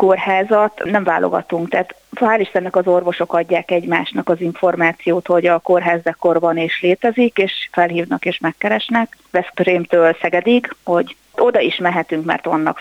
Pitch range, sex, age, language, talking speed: 170-190 Hz, female, 30-49, Hungarian, 140 wpm